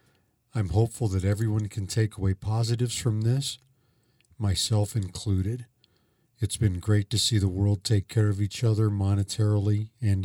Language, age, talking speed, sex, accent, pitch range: English, 50-69, 150 wpm, male, American, 95-120 Hz